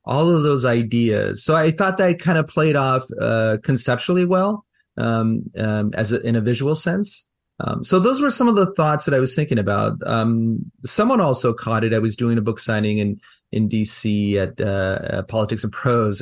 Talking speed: 205 wpm